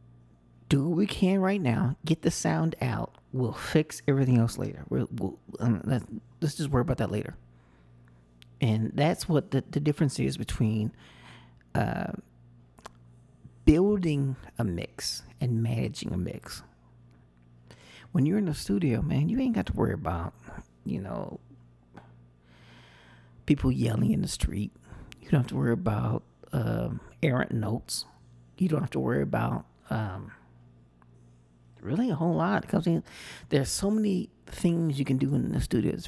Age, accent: 40-59, American